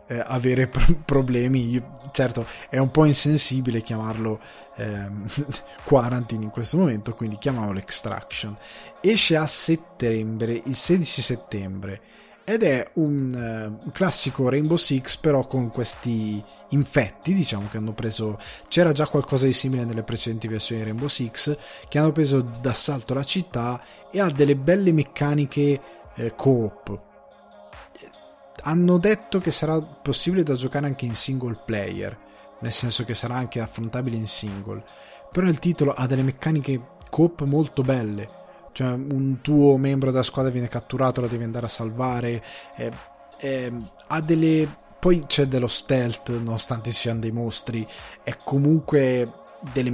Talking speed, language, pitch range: 140 wpm, Italian, 115-140 Hz